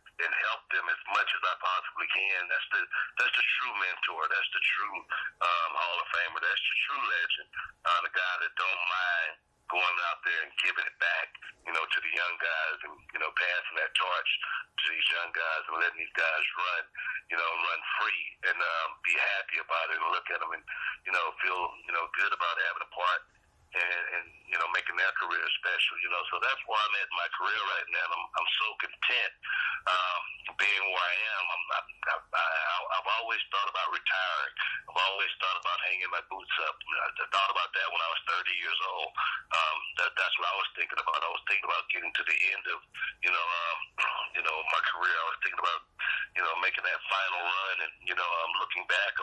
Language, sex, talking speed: English, male, 225 wpm